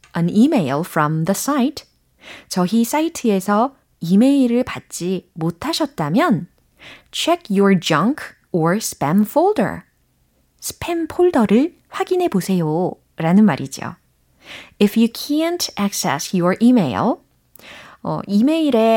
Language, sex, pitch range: Korean, female, 170-250 Hz